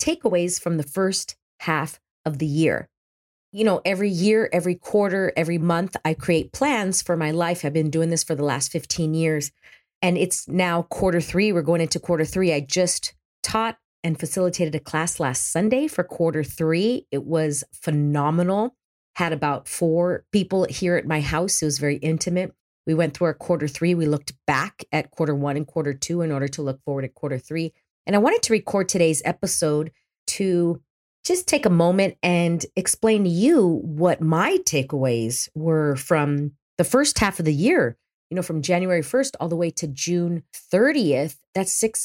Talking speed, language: 185 wpm, English